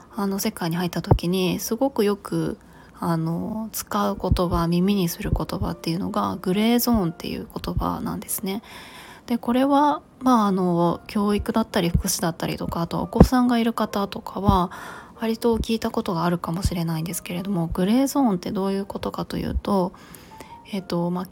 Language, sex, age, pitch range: Japanese, female, 20-39, 180-235 Hz